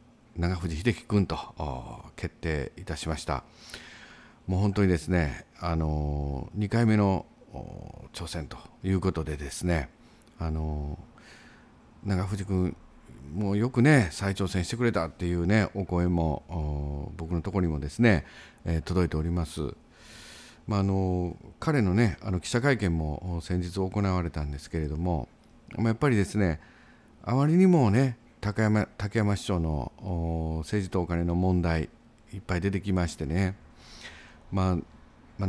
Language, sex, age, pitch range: Japanese, male, 50-69, 80-105 Hz